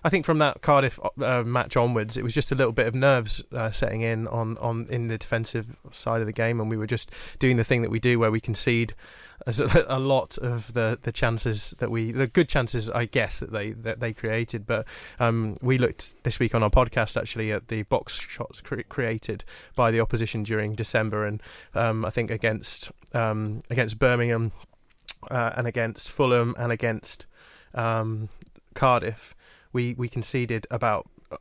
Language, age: English, 20-39